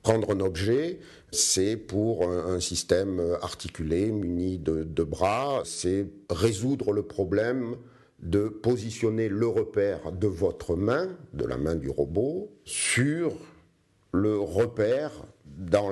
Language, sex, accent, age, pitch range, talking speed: French, male, French, 50-69, 85-120 Hz, 120 wpm